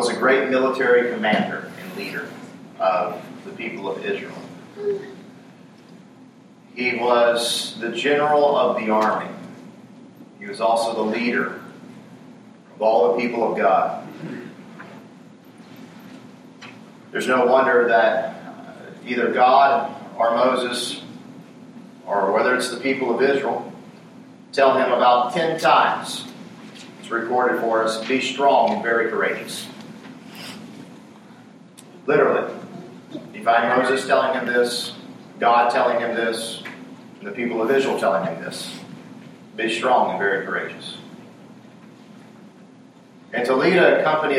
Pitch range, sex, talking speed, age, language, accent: 115-195 Hz, male, 120 wpm, 40-59, English, American